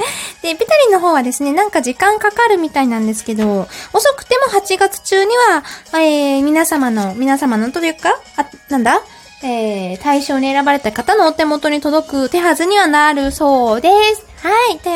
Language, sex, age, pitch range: Japanese, female, 20-39, 275-410 Hz